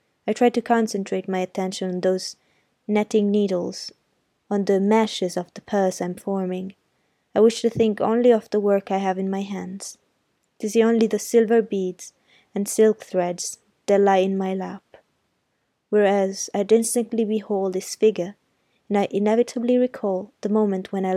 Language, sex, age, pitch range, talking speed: Italian, female, 20-39, 190-225 Hz, 165 wpm